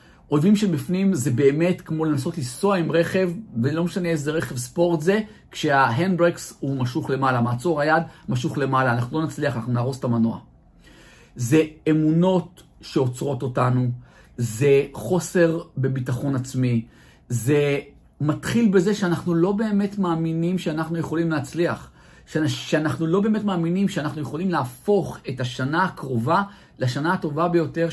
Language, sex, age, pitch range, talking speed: Hebrew, male, 50-69, 125-175 Hz, 135 wpm